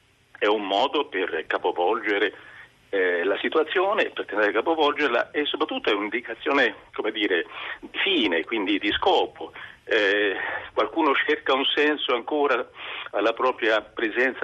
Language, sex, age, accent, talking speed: Italian, male, 50-69, native, 130 wpm